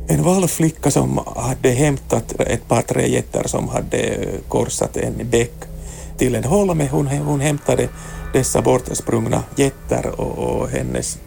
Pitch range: 100-140 Hz